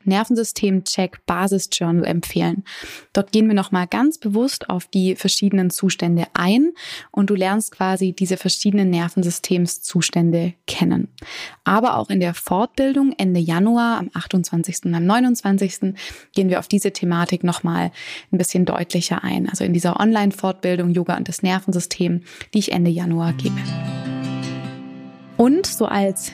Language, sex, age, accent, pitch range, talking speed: German, female, 20-39, German, 180-215 Hz, 135 wpm